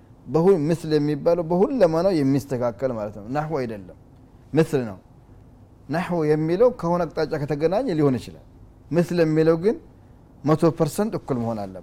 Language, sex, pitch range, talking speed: Amharic, male, 125-170 Hz, 130 wpm